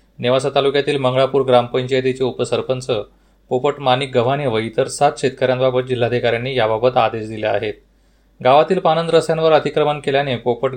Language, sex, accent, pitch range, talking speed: Marathi, male, native, 125-155 Hz, 125 wpm